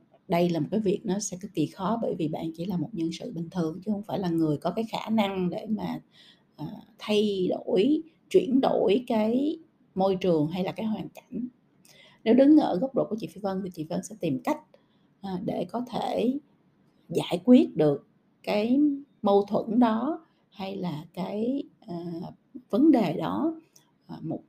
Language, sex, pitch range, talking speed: Vietnamese, female, 170-230 Hz, 185 wpm